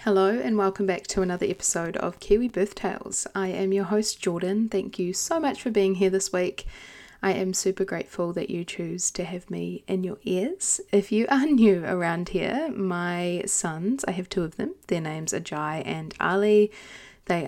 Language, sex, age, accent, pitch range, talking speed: English, female, 20-39, Australian, 180-210 Hz, 200 wpm